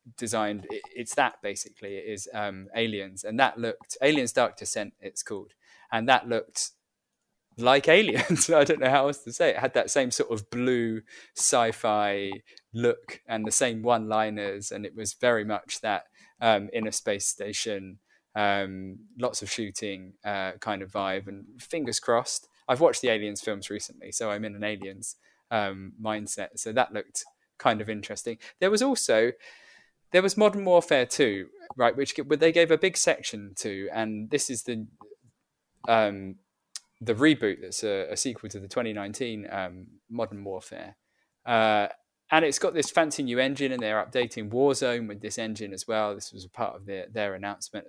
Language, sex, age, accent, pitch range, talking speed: English, male, 20-39, British, 100-140 Hz, 175 wpm